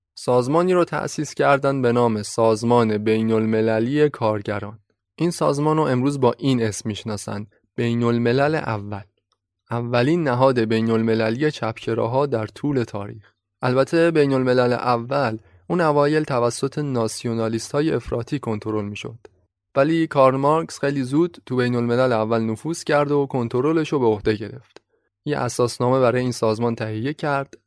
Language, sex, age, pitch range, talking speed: Persian, male, 20-39, 110-135 Hz, 145 wpm